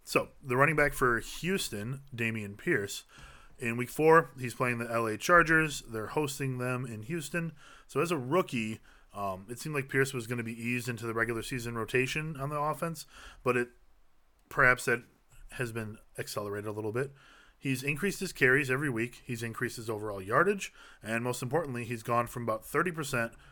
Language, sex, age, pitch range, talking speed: English, male, 20-39, 115-135 Hz, 185 wpm